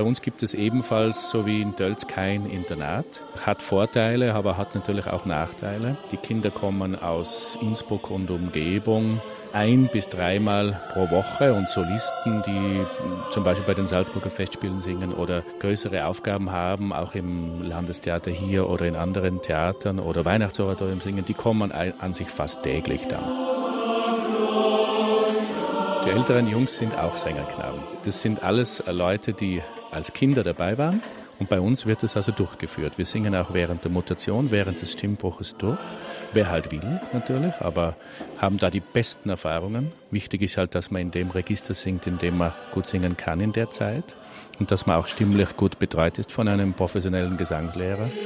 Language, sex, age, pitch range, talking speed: German, male, 40-59, 90-115 Hz, 170 wpm